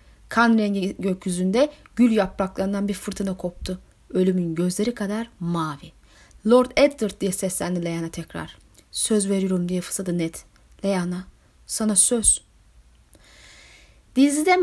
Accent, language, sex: native, Turkish, female